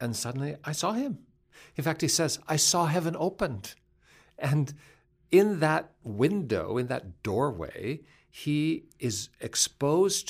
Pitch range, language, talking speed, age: 100-155 Hz, English, 135 wpm, 60-79